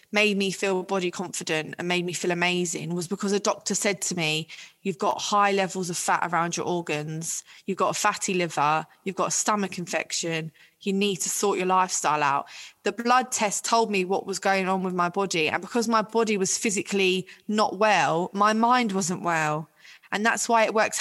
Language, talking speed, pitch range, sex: English, 205 wpm, 180-215 Hz, female